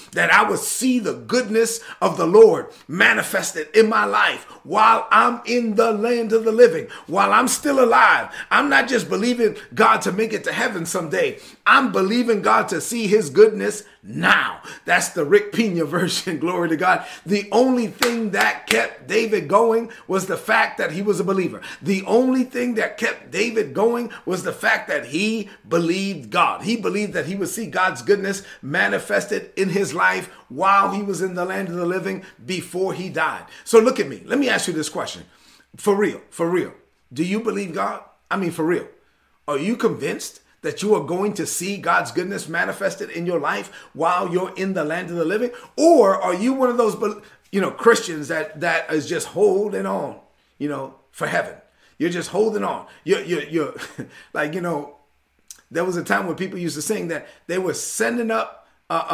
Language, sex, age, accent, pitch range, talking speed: English, male, 40-59, American, 175-230 Hz, 200 wpm